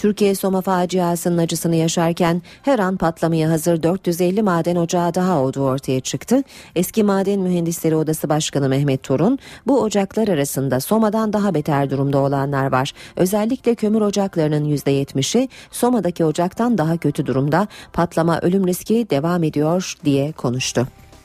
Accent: native